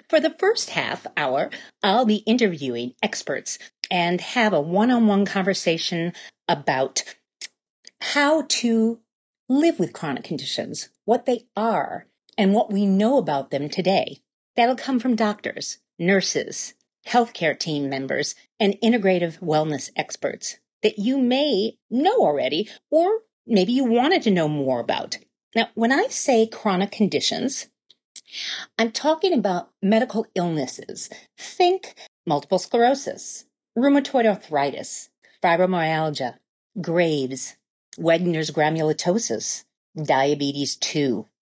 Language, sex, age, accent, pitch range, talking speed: English, female, 40-59, American, 155-245 Hz, 115 wpm